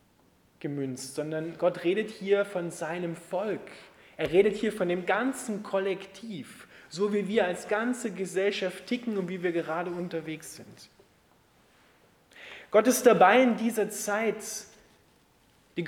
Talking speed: 130 wpm